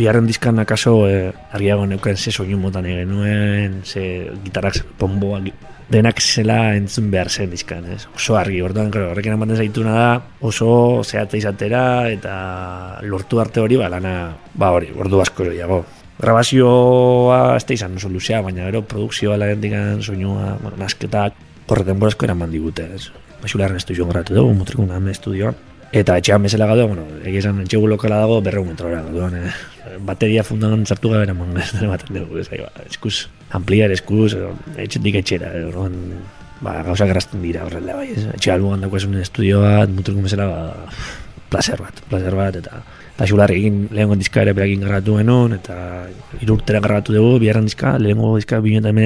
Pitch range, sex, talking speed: 95-110 Hz, male, 135 wpm